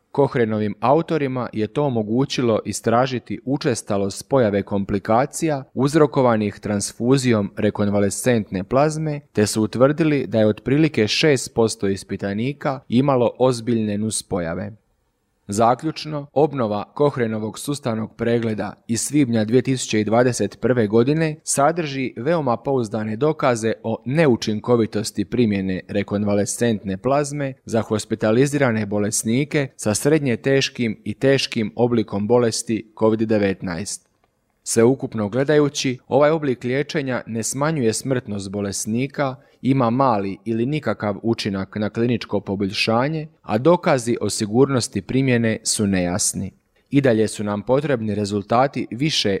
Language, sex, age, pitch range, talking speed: Croatian, male, 30-49, 105-135 Hz, 105 wpm